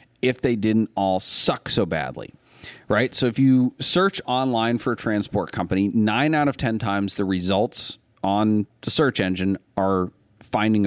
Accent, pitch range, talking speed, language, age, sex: American, 95-120 Hz, 165 wpm, English, 40-59, male